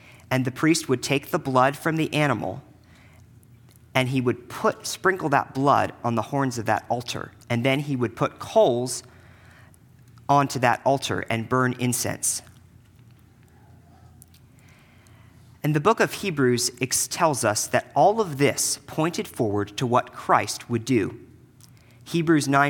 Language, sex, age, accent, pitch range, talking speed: English, male, 40-59, American, 115-140 Hz, 145 wpm